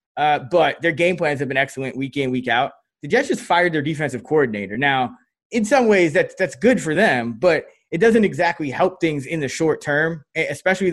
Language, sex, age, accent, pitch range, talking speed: English, male, 20-39, American, 135-175 Hz, 215 wpm